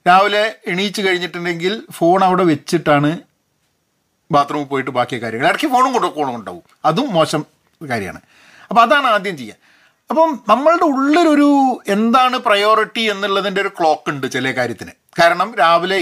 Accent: native